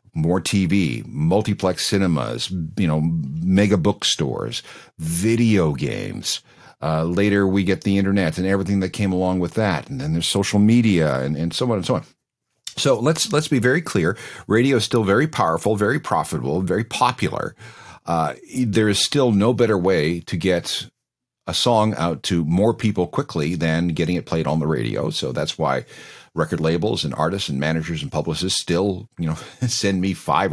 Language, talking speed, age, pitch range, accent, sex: English, 175 wpm, 50-69, 80-100 Hz, American, male